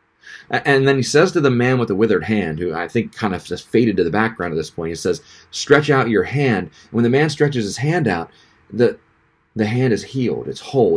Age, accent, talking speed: 30-49, American, 240 wpm